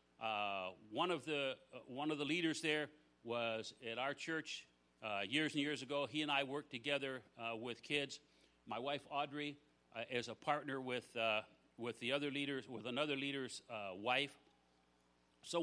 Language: English